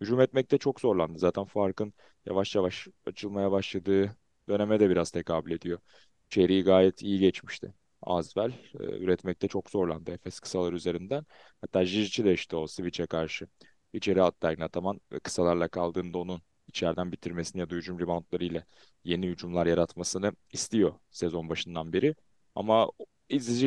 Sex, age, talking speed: male, 30-49, 135 wpm